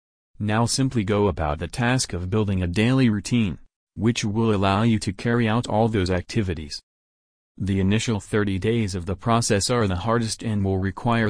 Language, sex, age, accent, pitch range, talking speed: English, male, 30-49, American, 95-115 Hz, 180 wpm